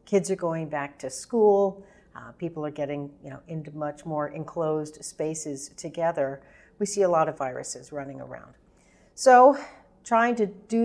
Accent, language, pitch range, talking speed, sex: American, English, 155-200 Hz, 155 wpm, female